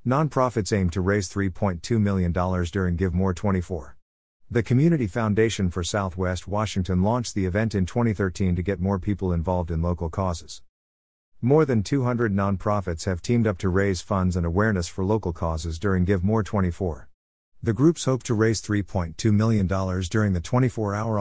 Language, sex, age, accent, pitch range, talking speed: English, male, 50-69, American, 90-110 Hz, 165 wpm